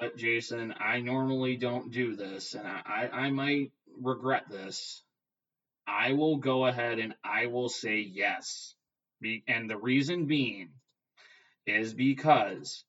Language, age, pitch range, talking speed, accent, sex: English, 20-39, 115-135 Hz, 130 wpm, American, male